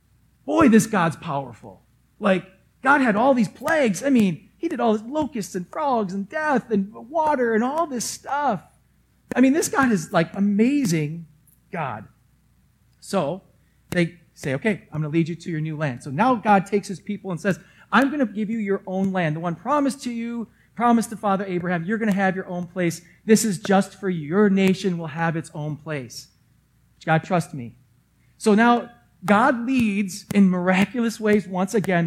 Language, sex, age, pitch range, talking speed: English, male, 40-59, 170-225 Hz, 195 wpm